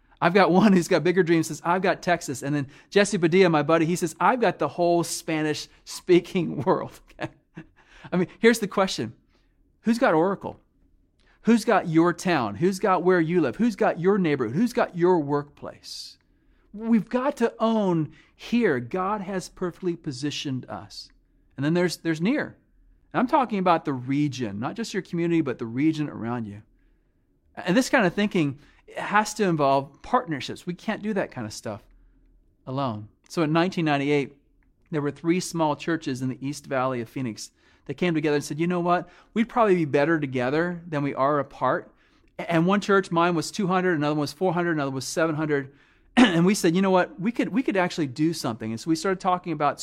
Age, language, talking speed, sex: 40-59, English, 195 wpm, male